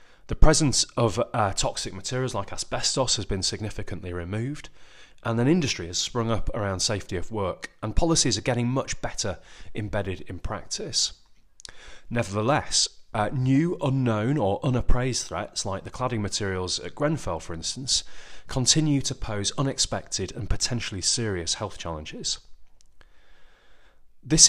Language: English